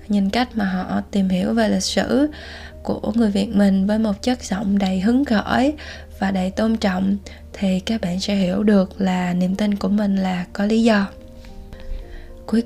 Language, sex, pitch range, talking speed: Vietnamese, female, 185-220 Hz, 190 wpm